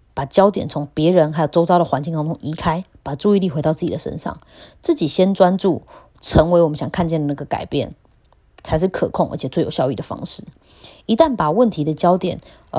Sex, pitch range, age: female, 155-205 Hz, 20-39